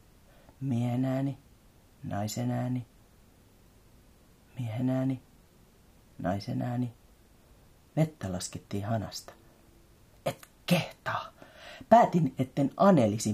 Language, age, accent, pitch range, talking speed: Finnish, 40-59, native, 100-130 Hz, 55 wpm